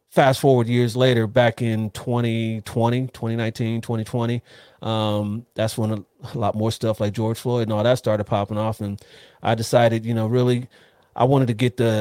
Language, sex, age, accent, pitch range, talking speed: English, male, 30-49, American, 110-130 Hz, 180 wpm